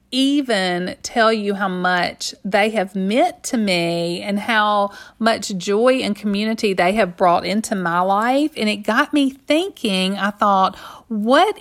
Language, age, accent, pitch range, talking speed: English, 40-59, American, 200-260 Hz, 155 wpm